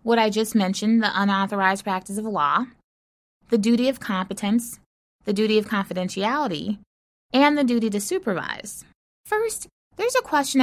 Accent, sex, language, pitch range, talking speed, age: American, female, English, 195-250 Hz, 145 wpm, 20-39